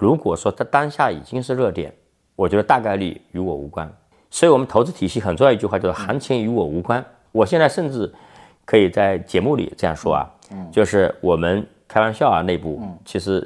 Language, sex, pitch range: Chinese, male, 90-140 Hz